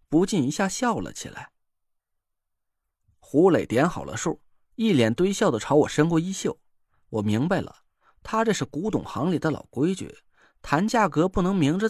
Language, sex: Chinese, male